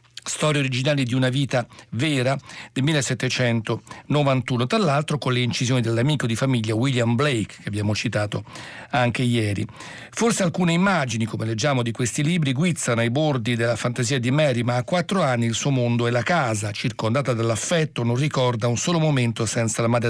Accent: native